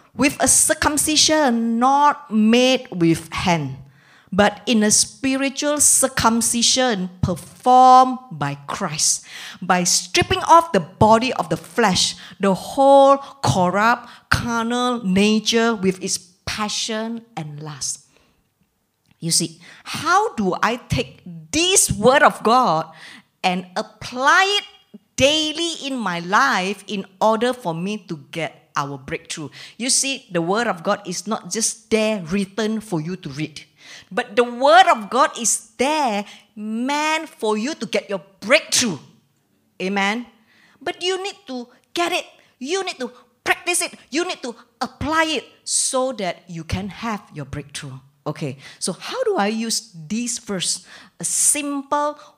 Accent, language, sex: Malaysian, English, female